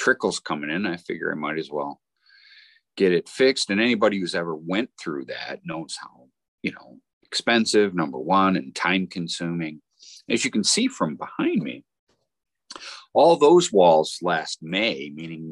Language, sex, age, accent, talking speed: English, male, 40-59, American, 160 wpm